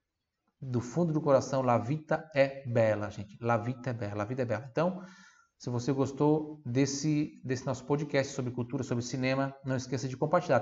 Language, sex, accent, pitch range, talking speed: Italian, male, Brazilian, 120-150 Hz, 185 wpm